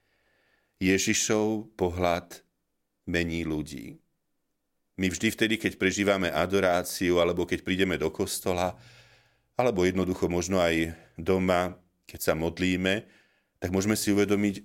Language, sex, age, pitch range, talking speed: Slovak, male, 40-59, 85-105 Hz, 110 wpm